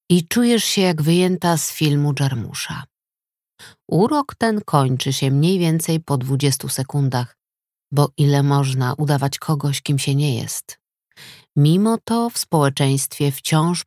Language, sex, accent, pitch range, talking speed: Polish, female, native, 140-180 Hz, 135 wpm